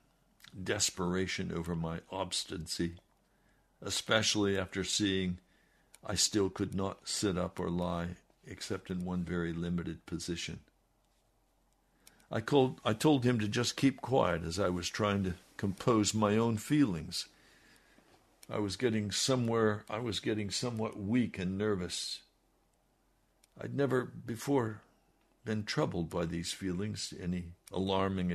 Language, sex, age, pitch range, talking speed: English, male, 60-79, 90-115 Hz, 130 wpm